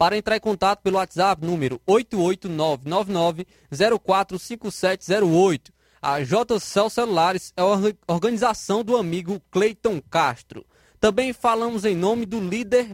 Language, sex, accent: Portuguese, male, Brazilian